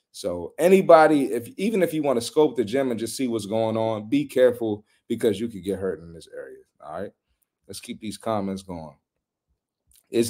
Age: 30-49